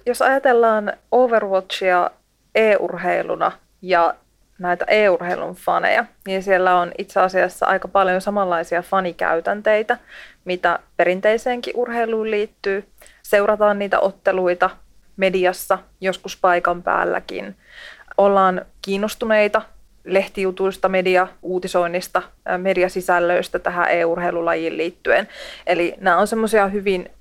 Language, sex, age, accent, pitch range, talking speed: Finnish, female, 30-49, native, 180-210 Hz, 90 wpm